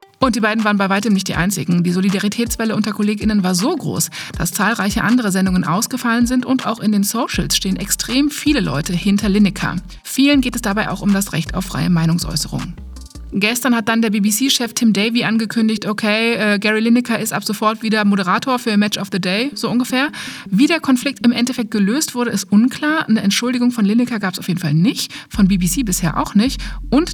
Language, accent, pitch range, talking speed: German, German, 190-245 Hz, 205 wpm